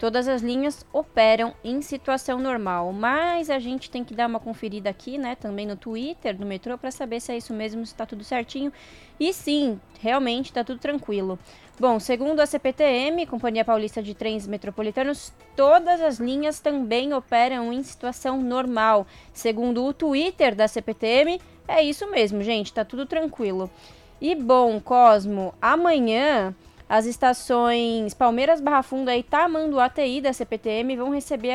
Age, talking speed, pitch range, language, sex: 20-39, 160 wpm, 220-275 Hz, Portuguese, female